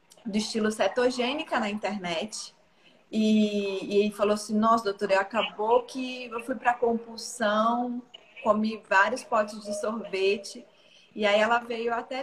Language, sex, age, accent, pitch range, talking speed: Portuguese, female, 30-49, Brazilian, 200-240 Hz, 135 wpm